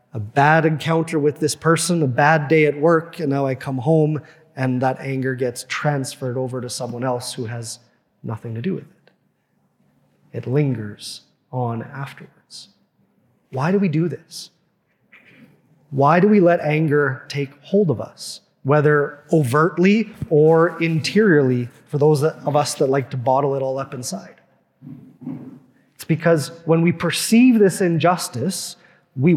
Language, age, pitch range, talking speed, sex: English, 30-49, 135-170 Hz, 150 wpm, male